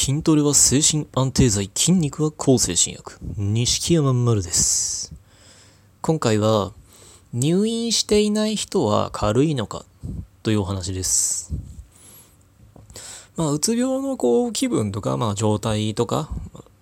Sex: male